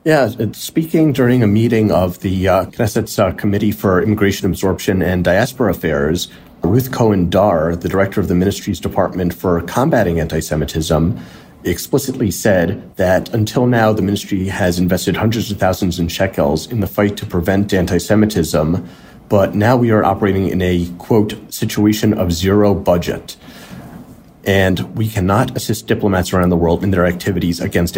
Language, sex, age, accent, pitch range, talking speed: English, male, 30-49, American, 90-105 Hz, 155 wpm